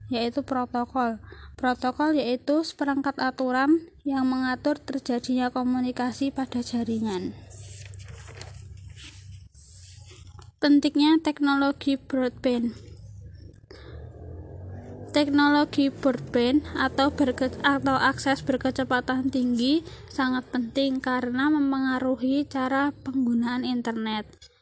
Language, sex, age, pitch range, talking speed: Indonesian, female, 20-39, 235-270 Hz, 75 wpm